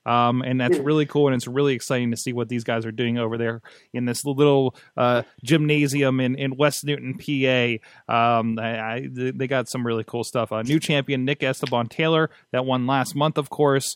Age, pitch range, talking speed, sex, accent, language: 30-49, 120-160 Hz, 215 wpm, male, American, English